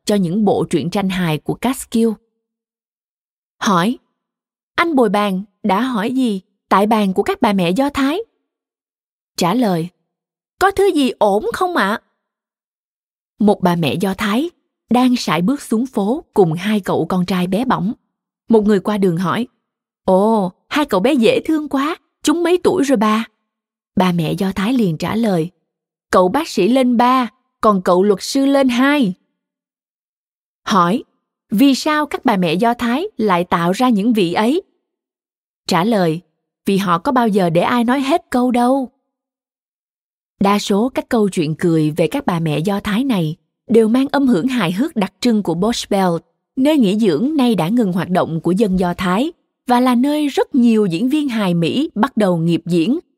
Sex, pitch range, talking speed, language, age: female, 185-260 Hz, 180 wpm, Vietnamese, 20-39